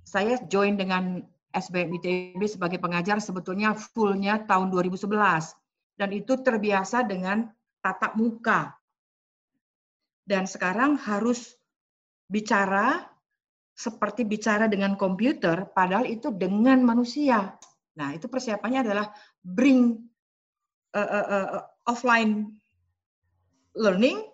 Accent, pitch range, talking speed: native, 195-255 Hz, 95 wpm